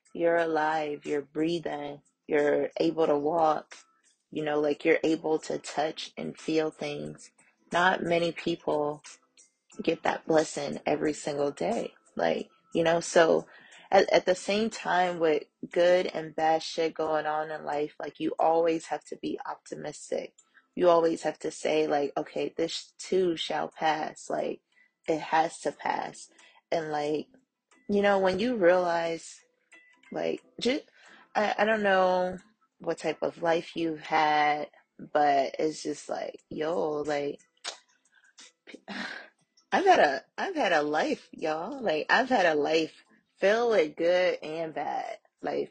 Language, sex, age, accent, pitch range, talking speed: English, female, 20-39, American, 155-195 Hz, 145 wpm